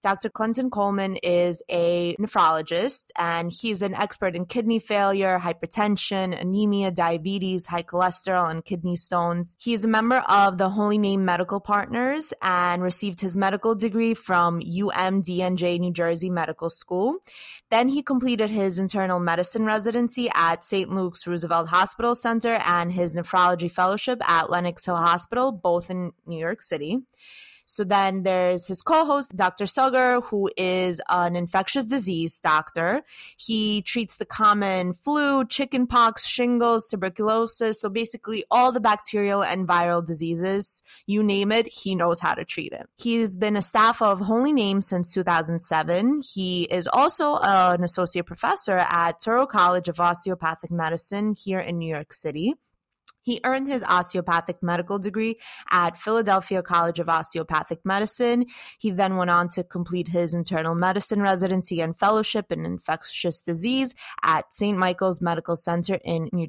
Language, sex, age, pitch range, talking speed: English, female, 20-39, 175-225 Hz, 150 wpm